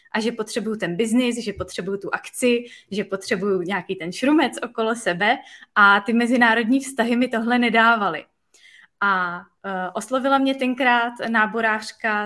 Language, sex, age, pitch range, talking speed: Czech, female, 20-39, 200-230 Hz, 135 wpm